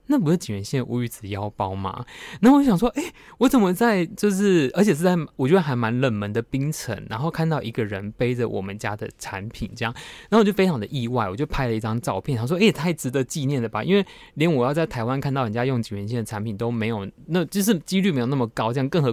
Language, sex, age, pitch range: Chinese, male, 20-39, 110-160 Hz